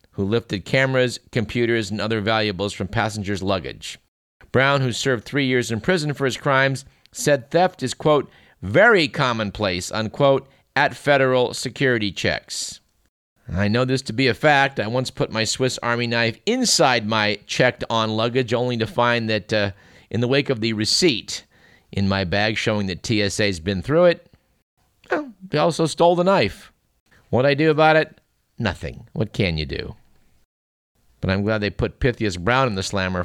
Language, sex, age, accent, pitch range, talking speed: English, male, 50-69, American, 100-135 Hz, 170 wpm